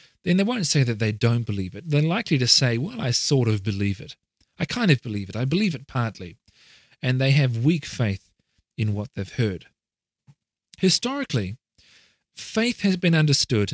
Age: 40-59